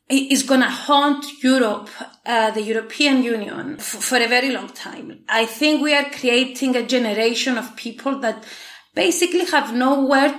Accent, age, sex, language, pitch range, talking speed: Spanish, 30-49, female, English, 230-285 Hz, 155 wpm